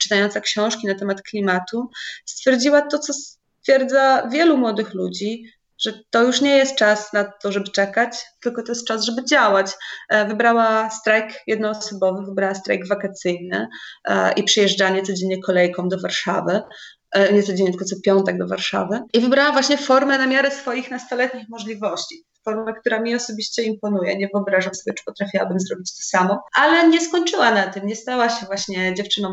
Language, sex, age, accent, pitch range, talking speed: Polish, female, 30-49, native, 190-235 Hz, 160 wpm